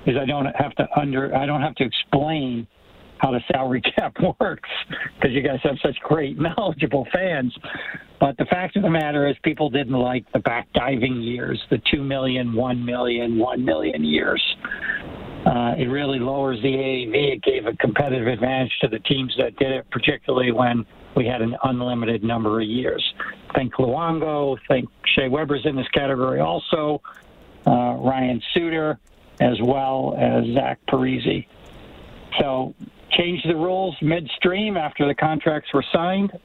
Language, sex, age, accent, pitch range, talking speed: English, male, 60-79, American, 125-150 Hz, 165 wpm